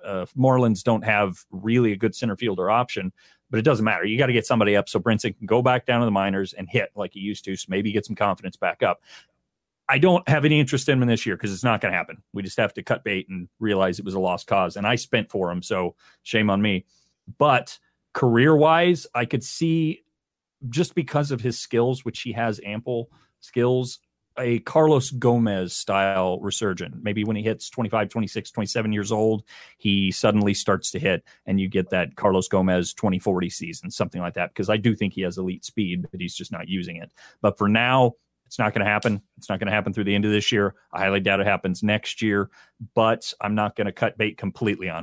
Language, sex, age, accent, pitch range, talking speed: English, male, 40-59, American, 95-120 Hz, 230 wpm